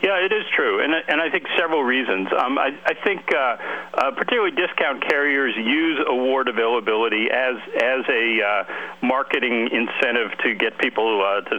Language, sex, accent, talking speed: English, male, American, 170 wpm